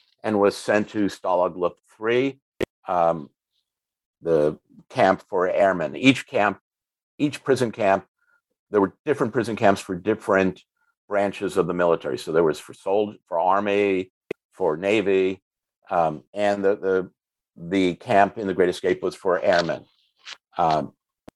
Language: English